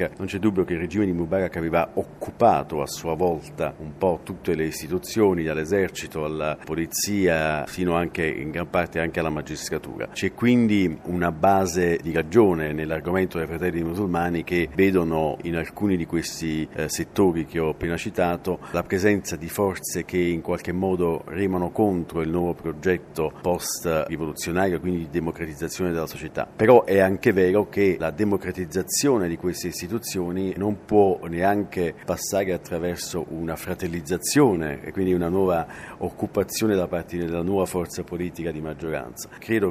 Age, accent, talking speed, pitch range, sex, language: 50-69, native, 155 wpm, 80-95 Hz, male, Italian